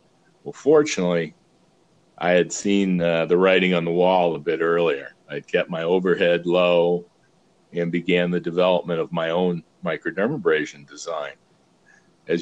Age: 50-69